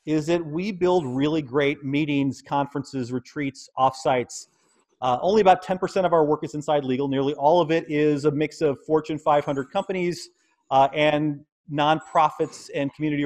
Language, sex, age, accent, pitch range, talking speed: English, male, 30-49, American, 145-175 Hz, 165 wpm